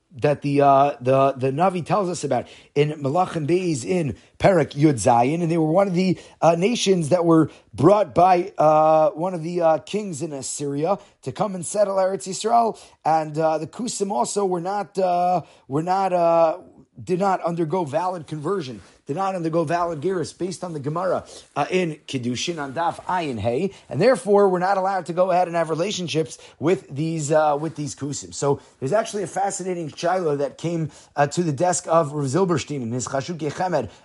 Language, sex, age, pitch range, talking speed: English, male, 30-49, 150-190 Hz, 190 wpm